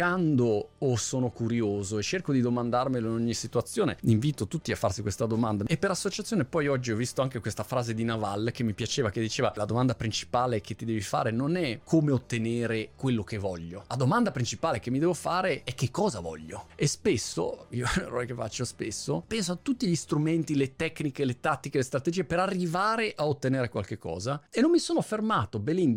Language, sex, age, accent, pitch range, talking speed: Italian, male, 30-49, native, 115-175 Hz, 205 wpm